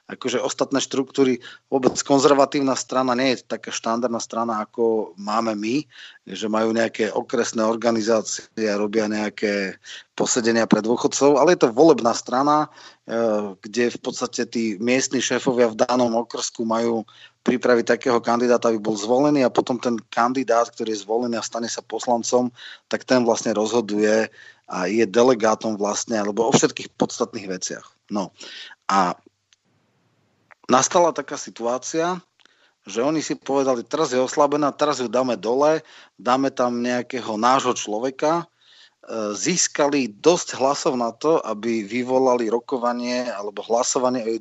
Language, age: Czech, 30-49